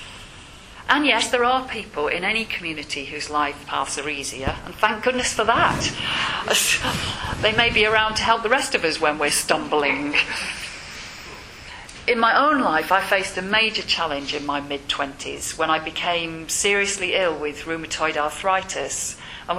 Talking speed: 160 wpm